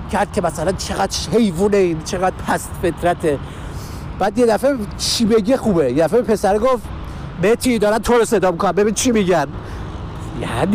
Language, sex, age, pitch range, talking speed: Persian, male, 50-69, 185-270 Hz, 155 wpm